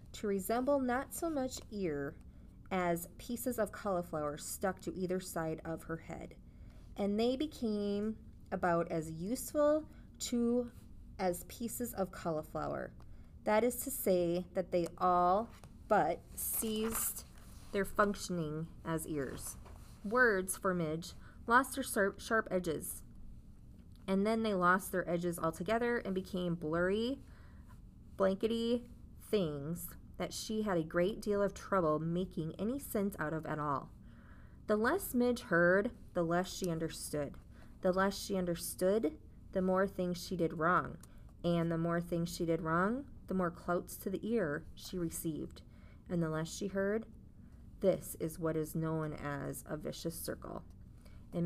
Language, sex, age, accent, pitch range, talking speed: English, female, 20-39, American, 165-215 Hz, 145 wpm